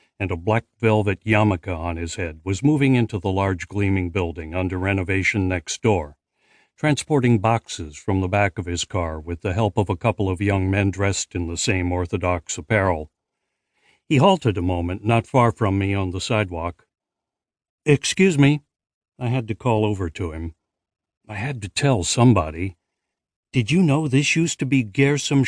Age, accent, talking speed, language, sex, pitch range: 60-79, American, 175 wpm, English, male, 95-130 Hz